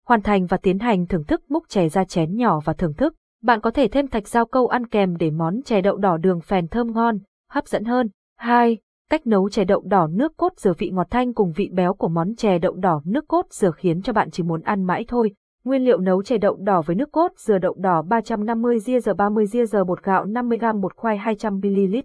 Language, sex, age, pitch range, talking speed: Vietnamese, female, 20-39, 185-240 Hz, 240 wpm